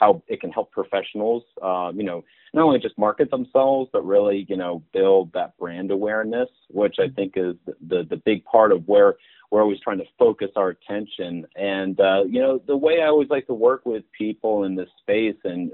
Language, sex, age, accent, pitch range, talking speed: English, male, 30-49, American, 100-135 Hz, 210 wpm